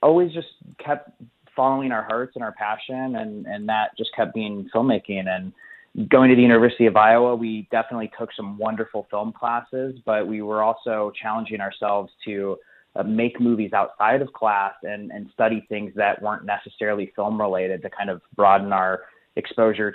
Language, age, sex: English, 30-49, male